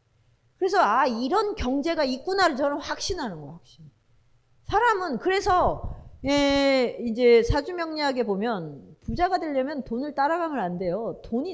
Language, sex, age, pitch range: Korean, female, 40-59, 205-315 Hz